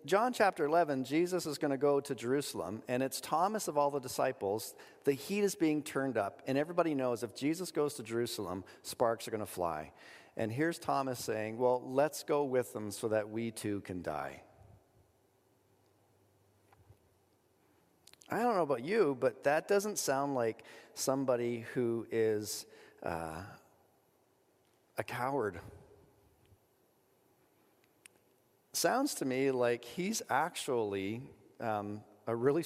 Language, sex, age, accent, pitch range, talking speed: English, male, 40-59, American, 110-140 Hz, 140 wpm